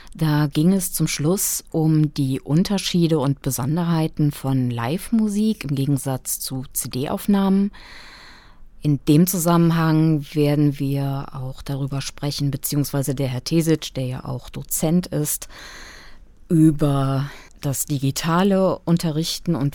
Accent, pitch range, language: German, 135-170 Hz, German